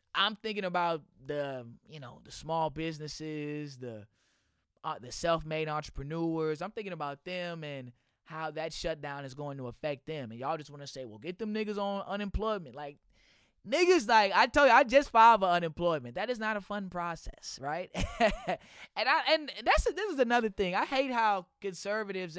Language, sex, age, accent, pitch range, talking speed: English, male, 20-39, American, 150-205 Hz, 190 wpm